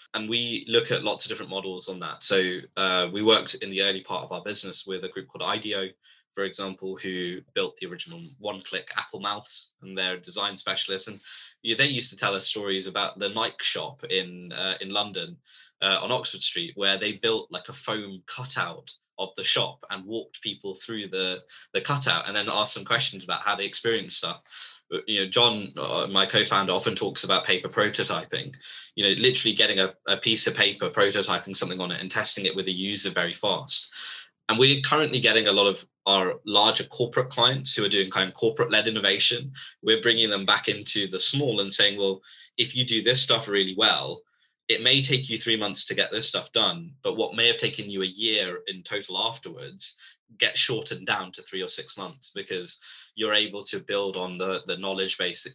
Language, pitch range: English, 95-115 Hz